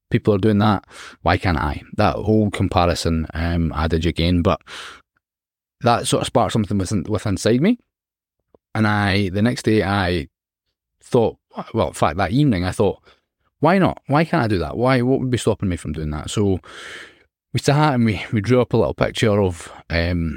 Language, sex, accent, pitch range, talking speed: English, male, British, 90-115 Hz, 195 wpm